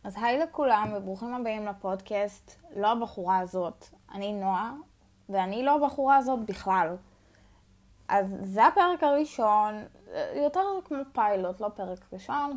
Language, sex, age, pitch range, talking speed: Hebrew, female, 20-39, 190-240 Hz, 125 wpm